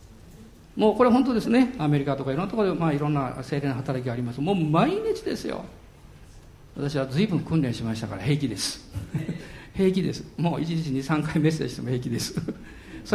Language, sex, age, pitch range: Japanese, male, 50-69, 125-195 Hz